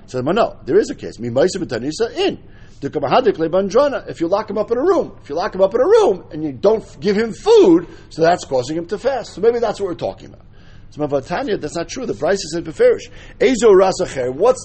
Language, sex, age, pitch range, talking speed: English, male, 50-69, 155-235 Hz, 210 wpm